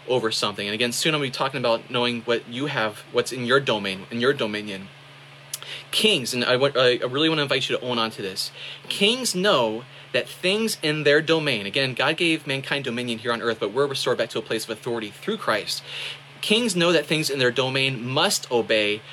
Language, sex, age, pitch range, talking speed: English, male, 30-49, 115-150 Hz, 230 wpm